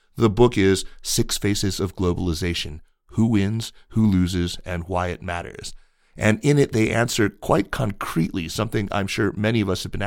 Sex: male